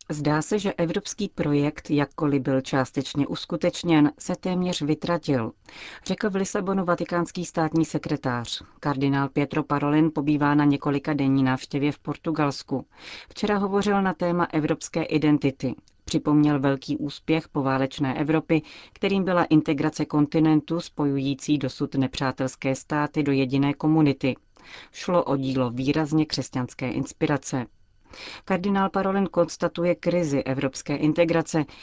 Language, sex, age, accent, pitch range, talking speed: Czech, female, 40-59, native, 140-165 Hz, 115 wpm